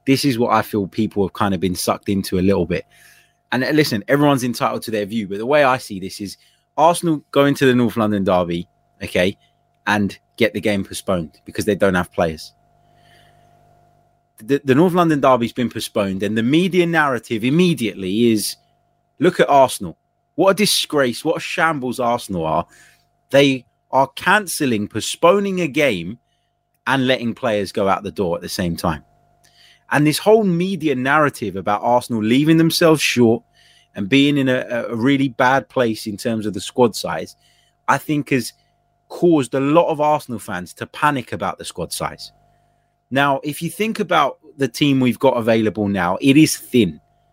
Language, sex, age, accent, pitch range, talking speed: English, male, 20-39, British, 110-150 Hz, 180 wpm